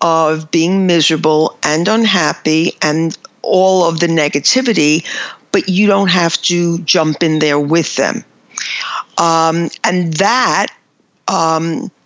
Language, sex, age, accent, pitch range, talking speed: English, female, 50-69, American, 160-195 Hz, 120 wpm